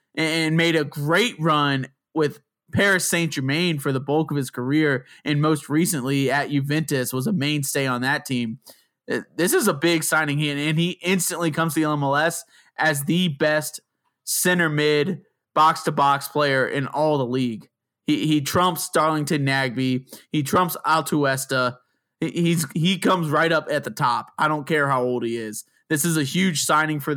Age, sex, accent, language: 20-39, male, American, English